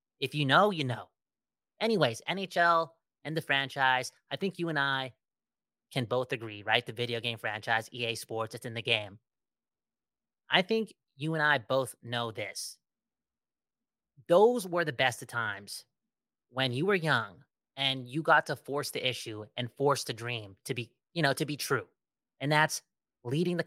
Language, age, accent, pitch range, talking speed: English, 20-39, American, 120-155 Hz, 175 wpm